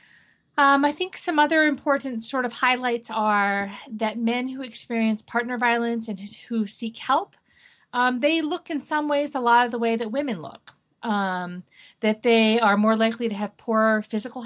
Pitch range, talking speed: 195-245 Hz, 185 wpm